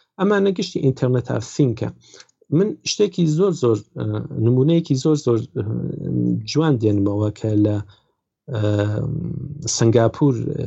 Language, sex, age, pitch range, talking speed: Arabic, male, 50-69, 110-150 Hz, 105 wpm